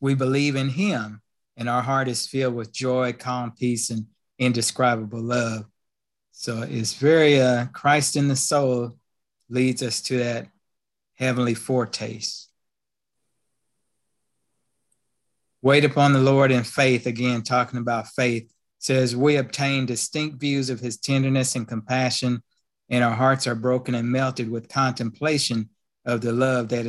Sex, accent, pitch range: male, American, 120-135 Hz